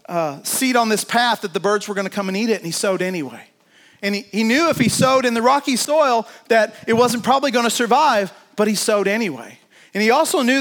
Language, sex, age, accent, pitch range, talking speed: English, male, 30-49, American, 195-250 Hz, 255 wpm